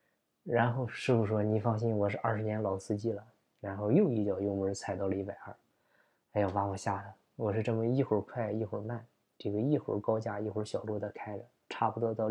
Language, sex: Chinese, male